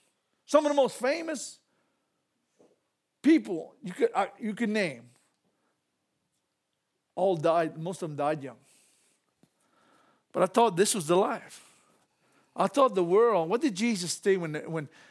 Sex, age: male, 50-69